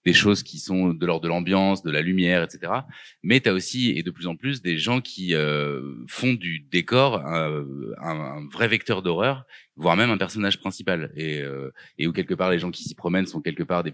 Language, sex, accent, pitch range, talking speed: French, male, French, 80-100 Hz, 235 wpm